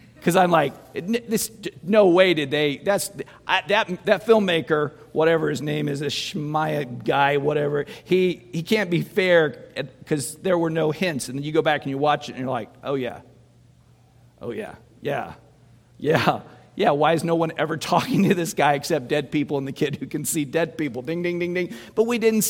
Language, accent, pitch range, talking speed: English, American, 145-180 Hz, 205 wpm